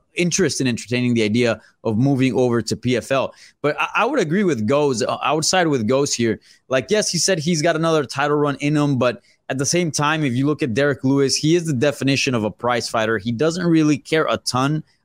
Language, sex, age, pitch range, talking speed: English, male, 20-39, 120-150 Hz, 235 wpm